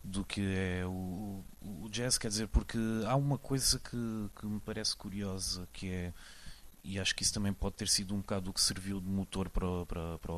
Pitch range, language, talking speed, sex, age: 95-110 Hz, Portuguese, 210 wpm, male, 30-49